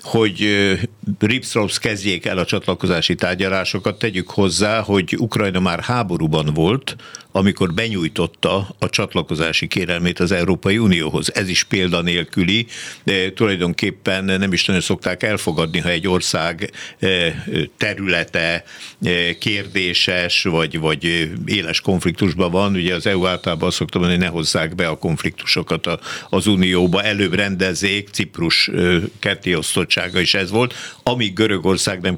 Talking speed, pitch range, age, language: 125 wpm, 90-110 Hz, 60-79, Hungarian